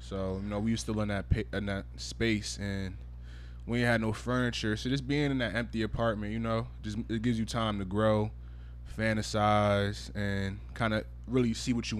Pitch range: 100-115 Hz